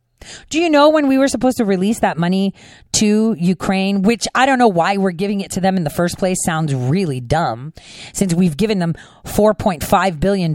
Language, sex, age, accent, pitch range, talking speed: English, female, 40-59, American, 200-295 Hz, 215 wpm